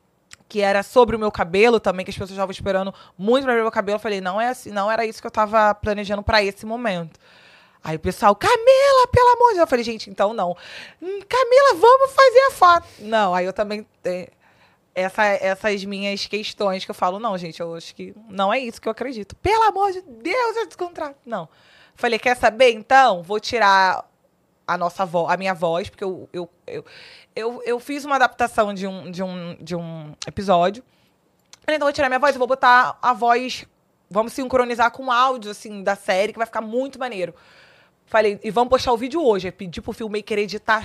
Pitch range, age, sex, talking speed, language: 195-255 Hz, 20-39, female, 215 wpm, Portuguese